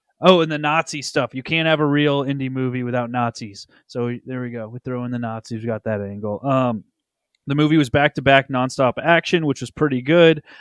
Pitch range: 125-155 Hz